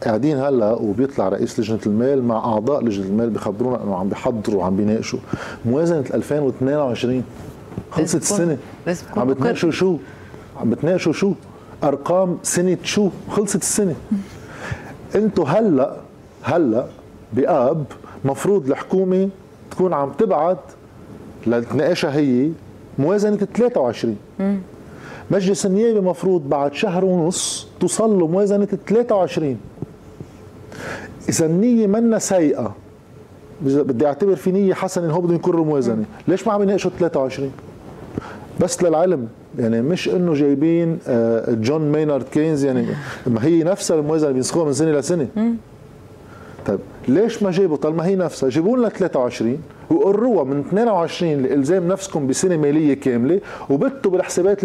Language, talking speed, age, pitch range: Arabic, 120 wpm, 50-69, 130-190 Hz